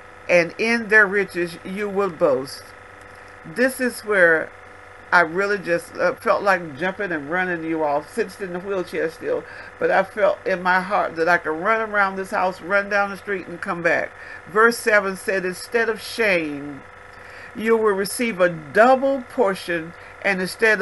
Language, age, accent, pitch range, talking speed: English, 50-69, American, 180-225 Hz, 175 wpm